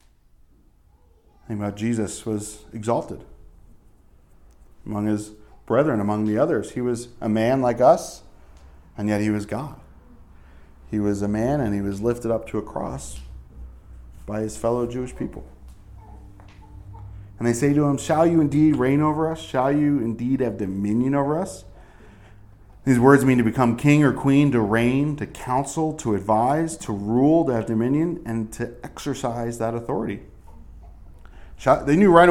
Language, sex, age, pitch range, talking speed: English, male, 40-59, 90-140 Hz, 155 wpm